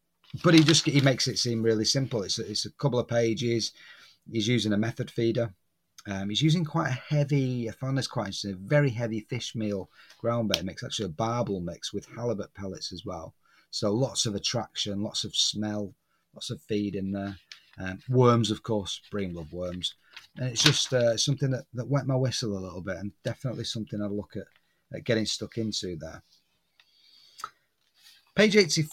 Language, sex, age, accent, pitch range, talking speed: English, male, 30-49, British, 100-125 Hz, 195 wpm